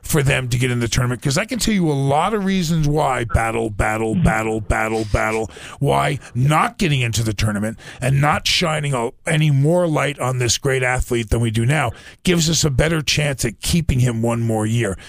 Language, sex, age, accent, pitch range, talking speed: English, male, 40-59, American, 115-155 Hz, 210 wpm